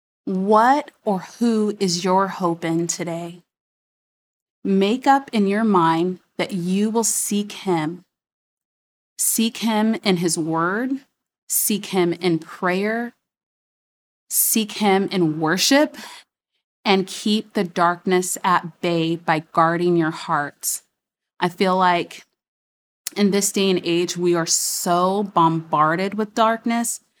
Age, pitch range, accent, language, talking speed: 30-49, 170-205 Hz, American, English, 120 wpm